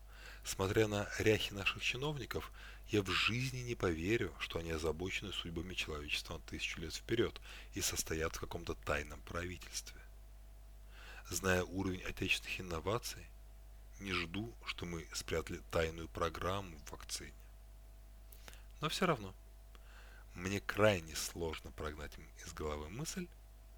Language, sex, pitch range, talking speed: Russian, male, 90-110 Hz, 120 wpm